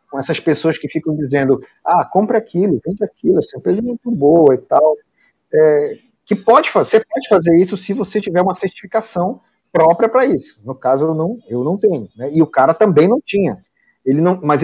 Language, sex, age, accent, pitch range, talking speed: Portuguese, male, 40-59, Brazilian, 140-210 Hz, 180 wpm